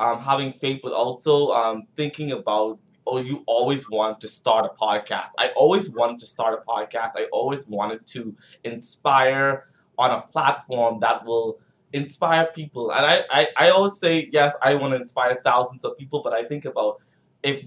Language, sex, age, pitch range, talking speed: English, male, 20-39, 115-150 Hz, 185 wpm